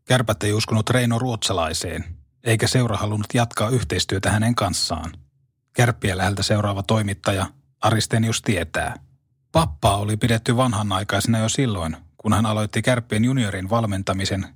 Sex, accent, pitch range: male, native, 100-125 Hz